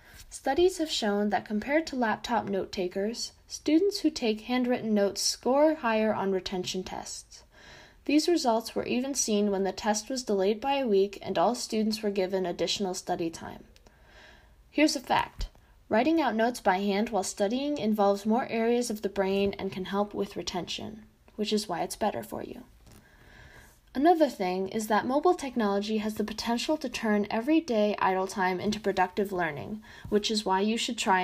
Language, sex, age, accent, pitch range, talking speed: English, female, 20-39, American, 195-245 Hz, 175 wpm